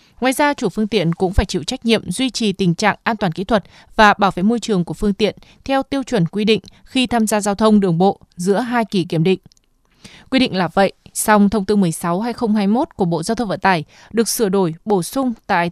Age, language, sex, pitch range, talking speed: 20-39, Vietnamese, female, 190-235 Hz, 240 wpm